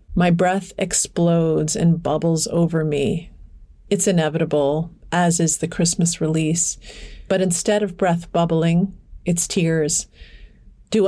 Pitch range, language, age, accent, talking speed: 160-185 Hz, English, 40-59, American, 120 wpm